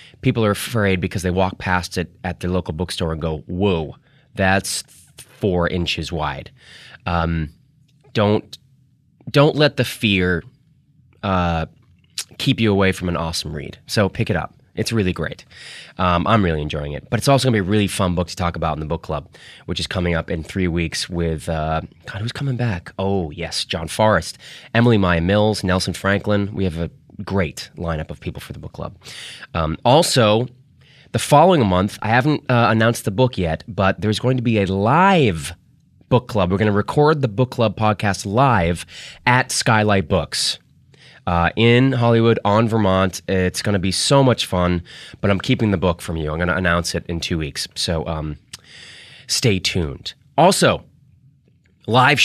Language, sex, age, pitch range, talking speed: English, male, 20-39, 85-120 Hz, 185 wpm